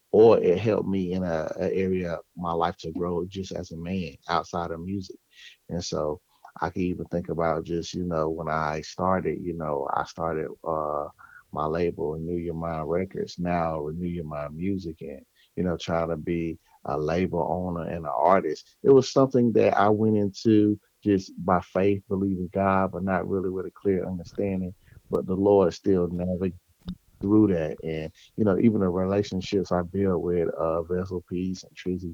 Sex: male